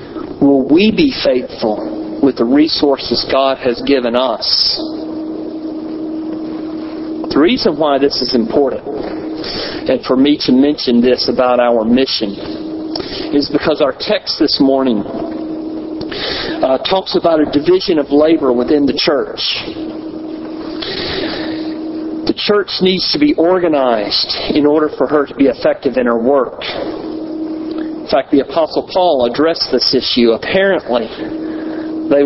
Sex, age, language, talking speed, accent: male, 50-69, English, 125 wpm, American